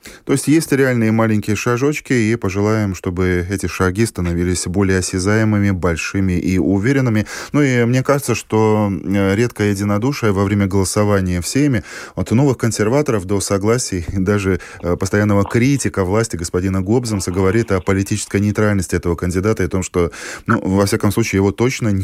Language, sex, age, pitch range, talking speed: Russian, male, 20-39, 95-115 Hz, 150 wpm